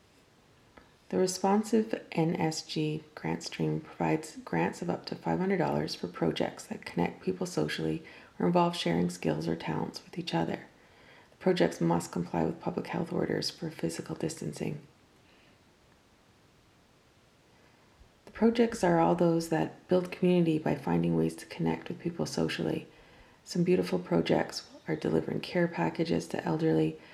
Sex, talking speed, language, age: female, 135 wpm, English, 30-49